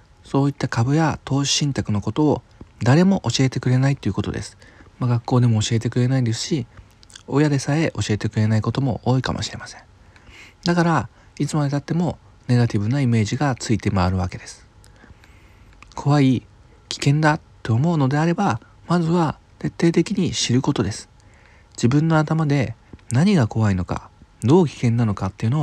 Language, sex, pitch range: Japanese, male, 105-145 Hz